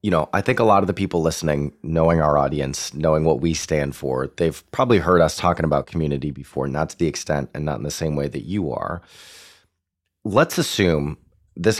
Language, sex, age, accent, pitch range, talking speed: English, male, 30-49, American, 75-90 Hz, 215 wpm